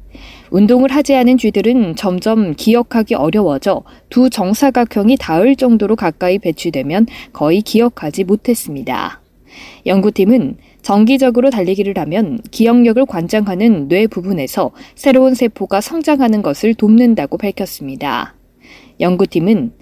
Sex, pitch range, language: female, 195-255 Hz, Korean